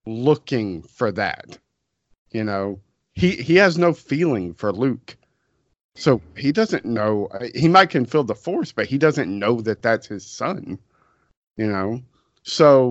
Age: 40-59